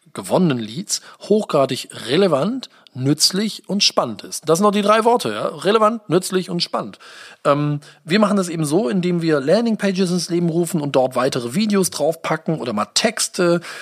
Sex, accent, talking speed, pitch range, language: male, German, 170 wpm, 140-200 Hz, German